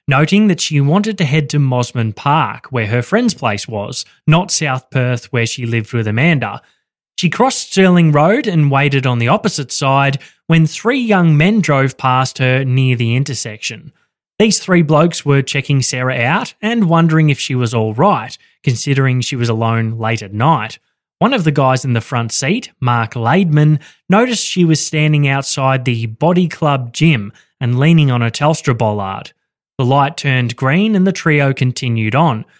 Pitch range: 125-170 Hz